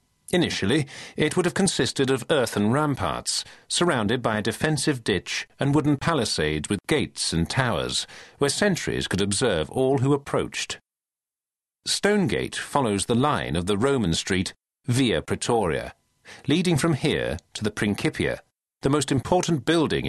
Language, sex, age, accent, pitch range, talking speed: English, male, 40-59, British, 100-155 Hz, 140 wpm